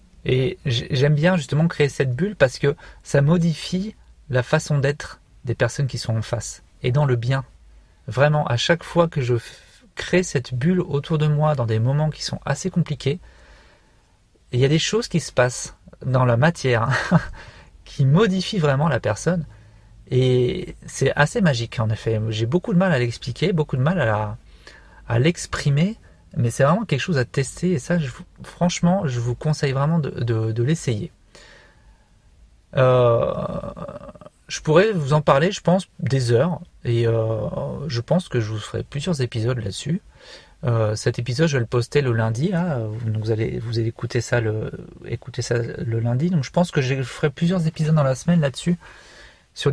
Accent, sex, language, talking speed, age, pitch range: French, male, French, 185 wpm, 40-59, 120-165 Hz